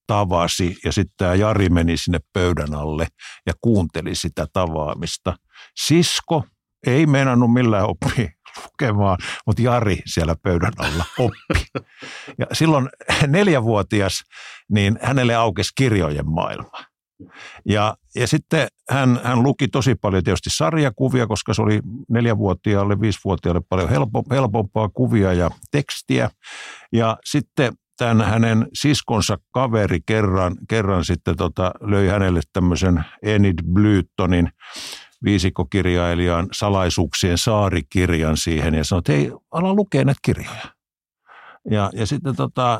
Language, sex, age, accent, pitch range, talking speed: Finnish, male, 50-69, native, 90-120 Hz, 120 wpm